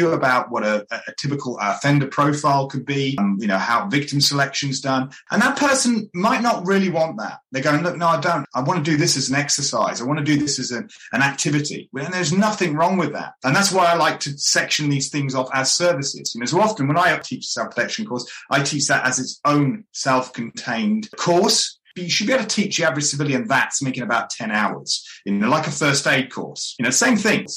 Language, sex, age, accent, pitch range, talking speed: English, male, 30-49, British, 135-180 Hz, 240 wpm